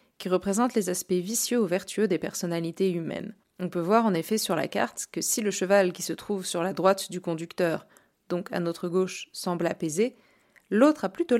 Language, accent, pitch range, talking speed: French, French, 180-220 Hz, 205 wpm